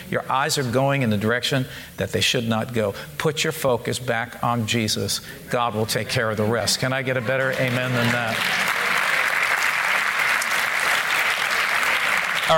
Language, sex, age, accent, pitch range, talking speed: English, male, 50-69, American, 115-145 Hz, 160 wpm